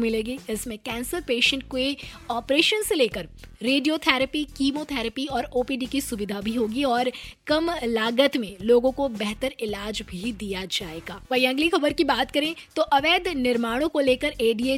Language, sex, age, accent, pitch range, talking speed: Hindi, female, 20-39, native, 230-285 Hz, 100 wpm